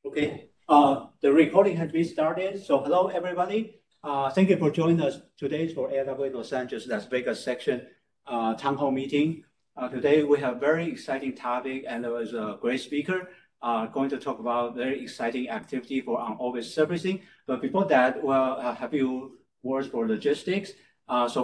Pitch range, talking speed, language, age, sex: 120-160 Hz, 195 wpm, English, 50-69, male